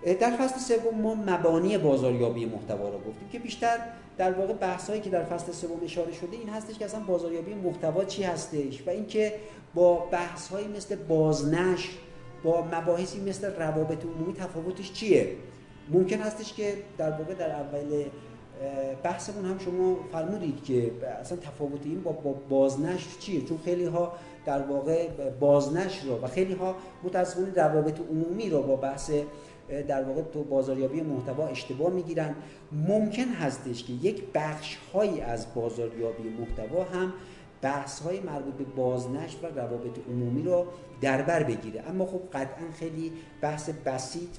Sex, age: male, 50-69